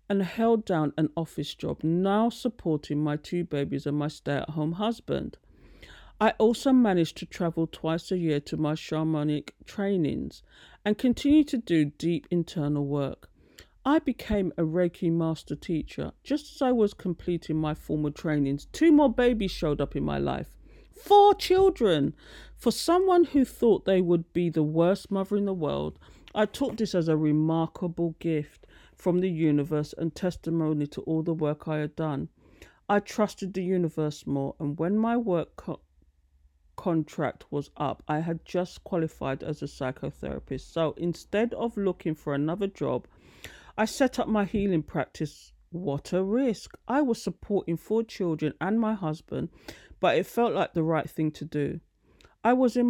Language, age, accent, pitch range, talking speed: English, 50-69, British, 150-205 Hz, 165 wpm